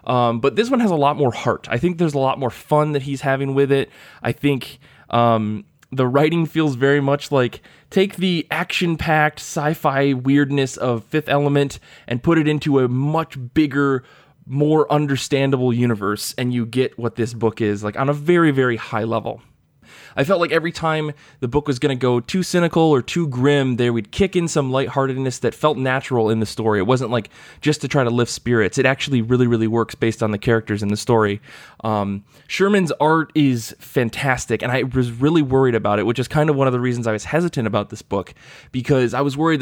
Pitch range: 115-145 Hz